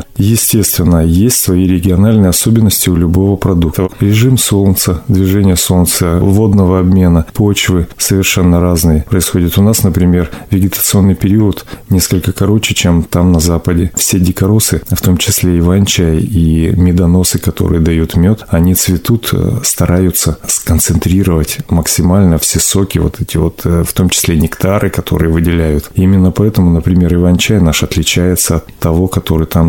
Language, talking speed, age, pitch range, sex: Russian, 135 wpm, 30-49, 85-100 Hz, male